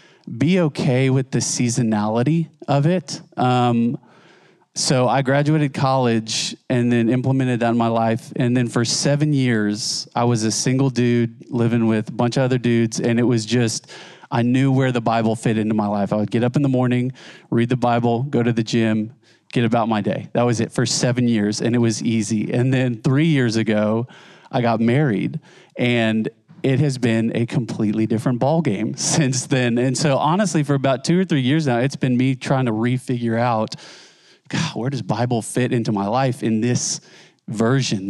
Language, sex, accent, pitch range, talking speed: English, male, American, 115-145 Hz, 195 wpm